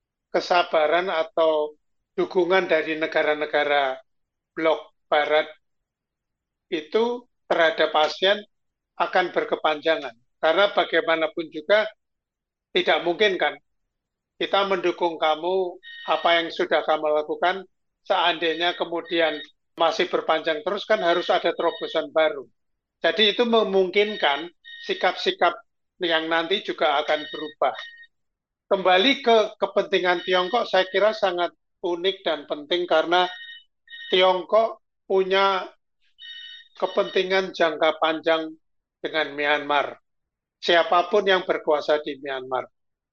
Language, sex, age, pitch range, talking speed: Indonesian, male, 50-69, 160-195 Hz, 95 wpm